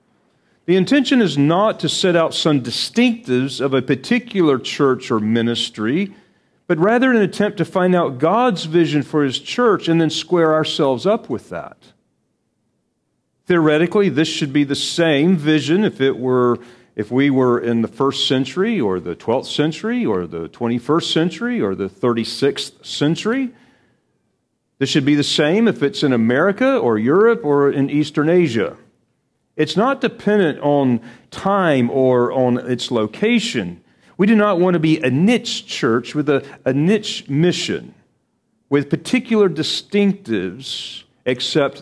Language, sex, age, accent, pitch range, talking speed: English, male, 50-69, American, 120-180 Hz, 150 wpm